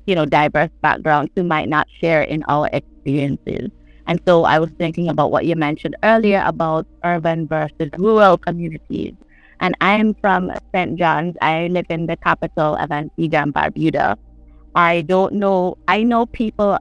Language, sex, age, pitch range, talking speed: English, female, 30-49, 155-190 Hz, 170 wpm